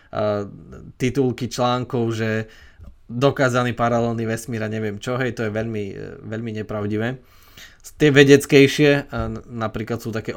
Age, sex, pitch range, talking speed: 20-39, male, 115-145 Hz, 115 wpm